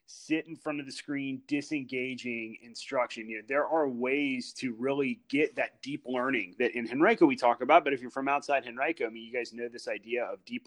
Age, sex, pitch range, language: 30-49, male, 125-145 Hz, English